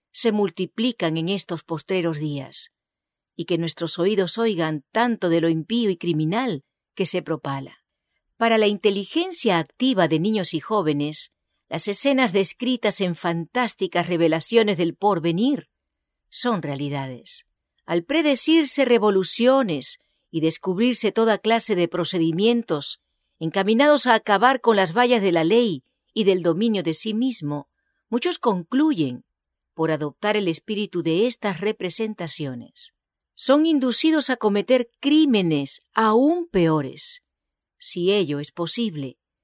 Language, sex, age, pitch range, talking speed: English, female, 50-69, 165-240 Hz, 125 wpm